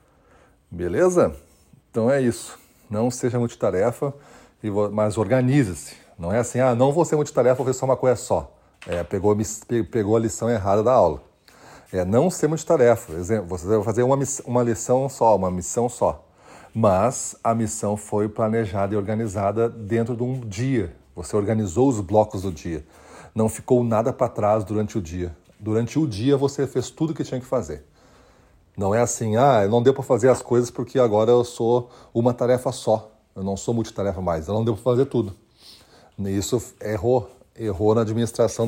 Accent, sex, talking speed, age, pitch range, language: Brazilian, male, 180 wpm, 40-59, 105-125 Hz, Portuguese